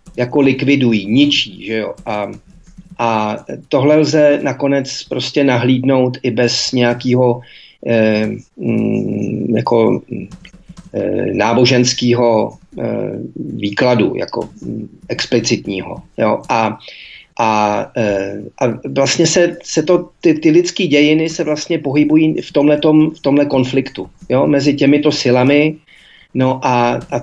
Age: 40-59